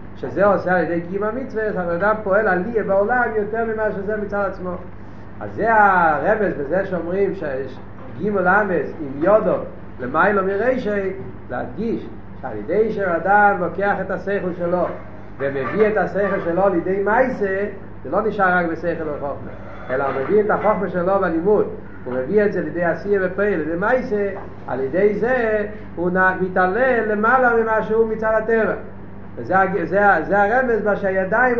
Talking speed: 150 wpm